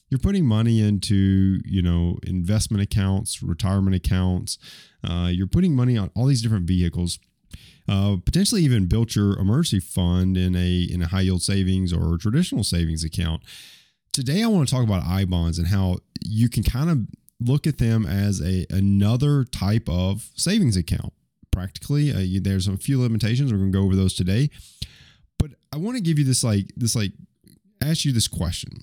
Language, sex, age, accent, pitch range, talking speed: English, male, 30-49, American, 95-120 Hz, 185 wpm